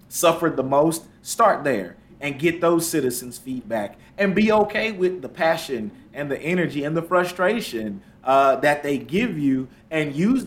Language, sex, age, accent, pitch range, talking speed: English, male, 30-49, American, 135-165 Hz, 165 wpm